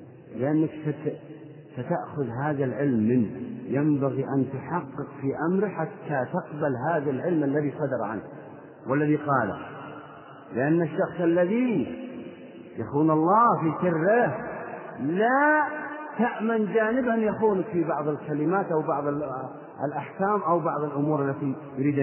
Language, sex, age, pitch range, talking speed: Arabic, male, 40-59, 145-215 Hz, 110 wpm